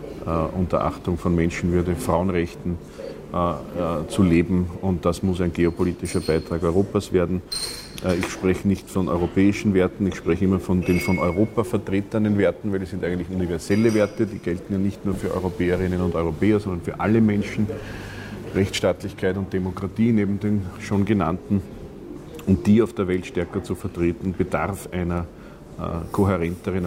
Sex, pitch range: male, 85-95 Hz